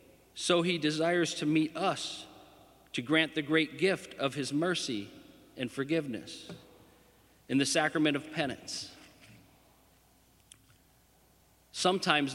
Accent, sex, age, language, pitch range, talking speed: American, male, 50-69, English, 125-155 Hz, 105 wpm